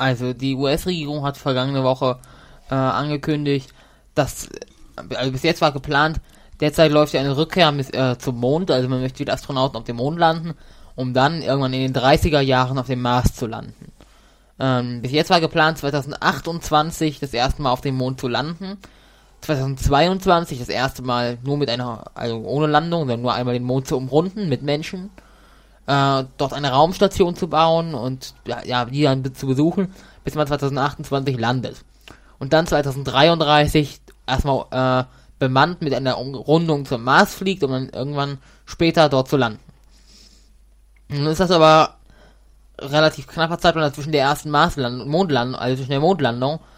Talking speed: 165 wpm